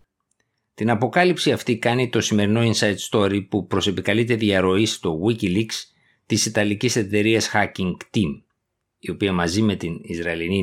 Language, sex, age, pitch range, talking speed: Greek, male, 50-69, 95-115 Hz, 135 wpm